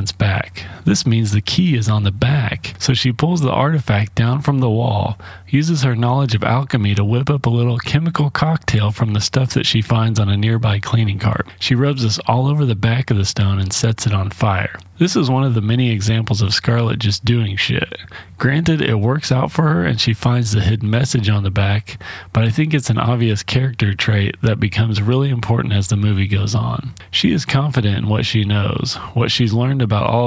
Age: 30-49